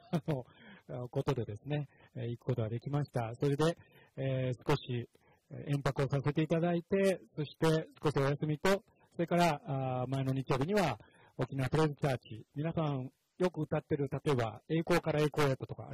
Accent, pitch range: native, 125-160 Hz